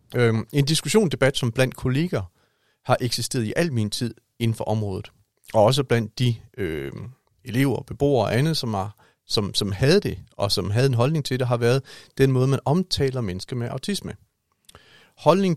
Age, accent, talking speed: 40-59, native, 180 wpm